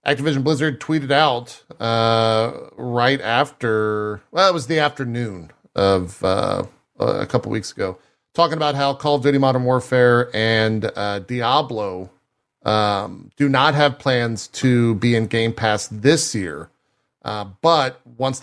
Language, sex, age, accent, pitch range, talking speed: English, male, 40-59, American, 100-140 Hz, 145 wpm